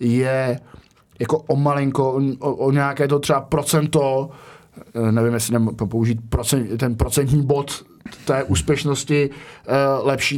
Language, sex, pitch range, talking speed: Czech, male, 105-120 Hz, 120 wpm